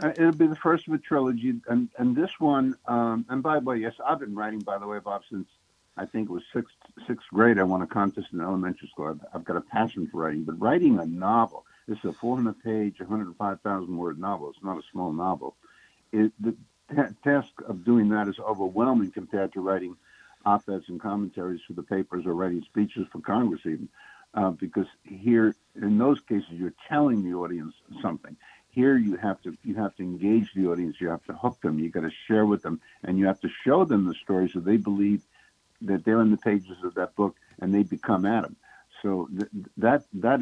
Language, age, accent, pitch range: English, 60-79, American, 95-115 Hz